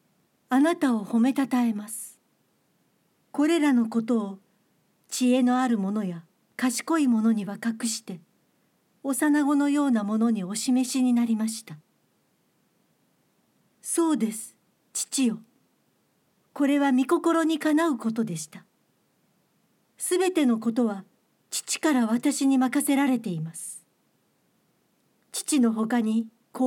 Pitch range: 215-275 Hz